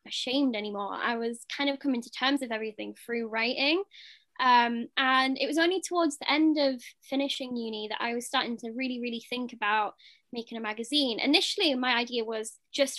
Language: English